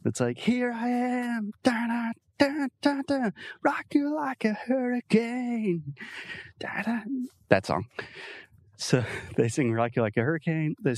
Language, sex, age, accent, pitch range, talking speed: Portuguese, male, 30-49, American, 110-145 Hz, 155 wpm